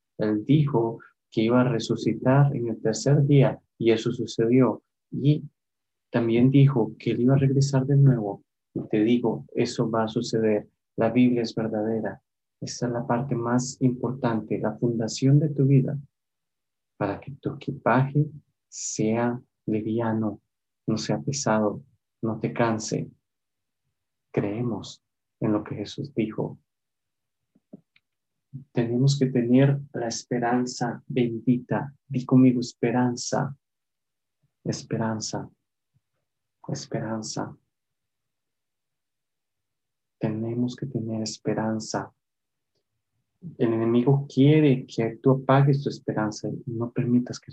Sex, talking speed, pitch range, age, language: male, 115 wpm, 110-130 Hz, 30-49, English